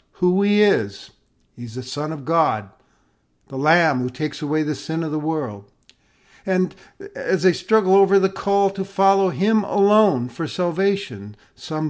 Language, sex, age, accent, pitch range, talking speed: English, male, 50-69, American, 135-195 Hz, 160 wpm